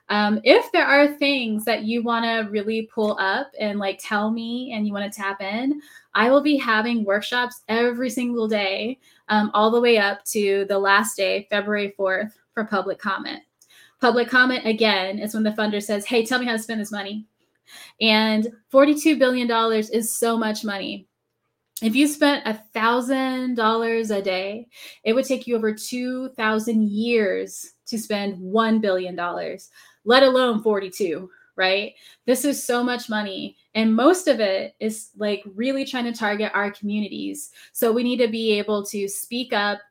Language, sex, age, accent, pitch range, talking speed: English, female, 10-29, American, 205-250 Hz, 170 wpm